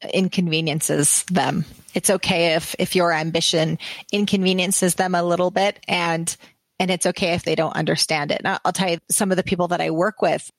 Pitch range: 175-200 Hz